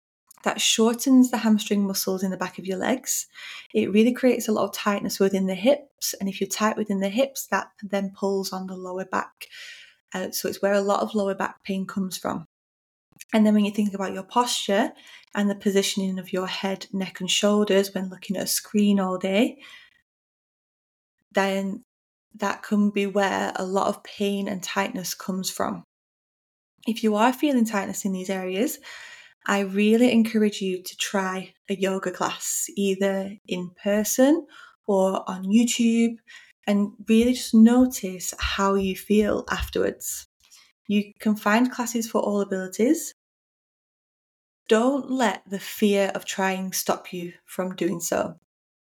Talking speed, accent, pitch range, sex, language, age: 165 wpm, British, 195-230 Hz, female, English, 10-29